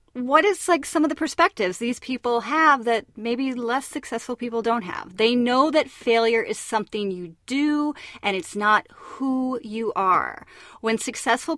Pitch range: 215-280 Hz